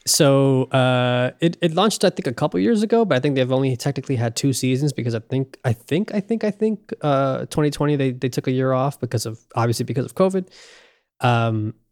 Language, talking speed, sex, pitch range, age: English, 220 wpm, male, 120-150 Hz, 20-39